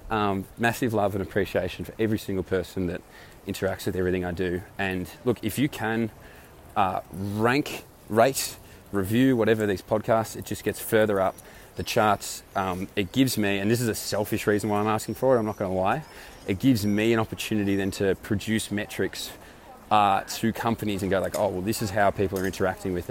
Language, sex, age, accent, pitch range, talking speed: English, male, 20-39, Australian, 95-110 Hz, 205 wpm